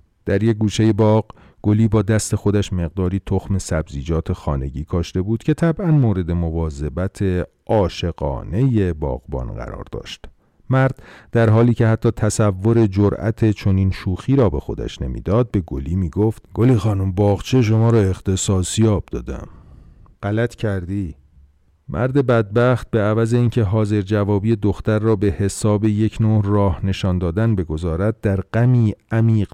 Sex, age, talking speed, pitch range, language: male, 40-59, 140 wpm, 85-110 Hz, Persian